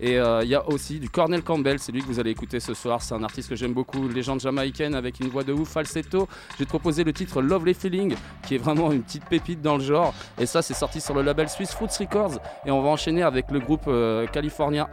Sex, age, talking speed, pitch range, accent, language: male, 20-39, 265 wpm, 130-170 Hz, French, French